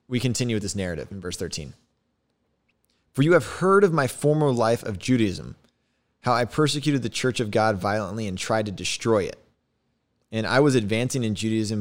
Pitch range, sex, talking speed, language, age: 95-125 Hz, male, 190 wpm, English, 20-39